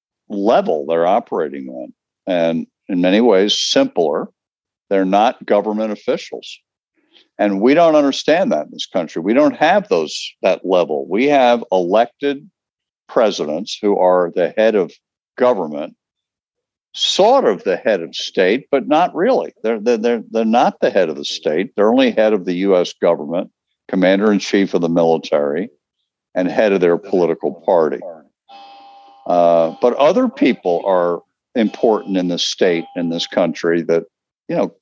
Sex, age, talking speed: male, 60-79, 155 wpm